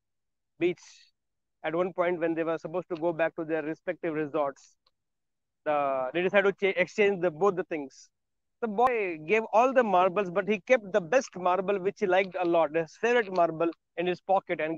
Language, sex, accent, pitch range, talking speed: English, male, Indian, 170-195 Hz, 185 wpm